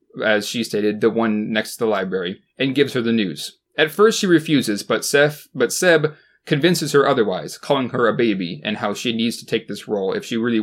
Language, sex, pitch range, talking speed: English, male, 110-160 Hz, 225 wpm